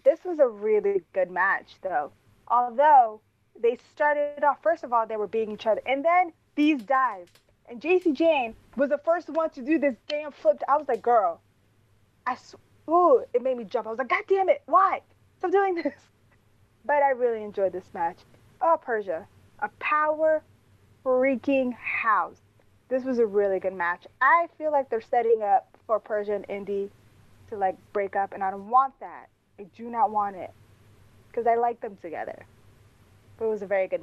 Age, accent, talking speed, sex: 20-39, American, 190 wpm, female